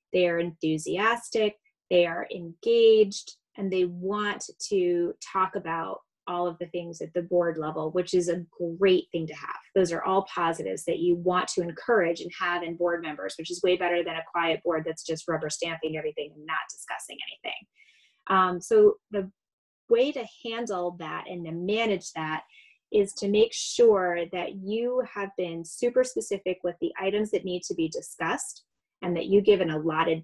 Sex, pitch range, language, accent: female, 170-210 Hz, English, American